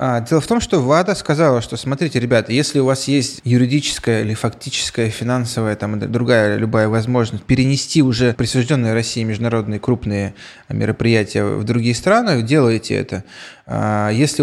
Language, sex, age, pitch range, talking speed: Russian, male, 20-39, 110-135 Hz, 140 wpm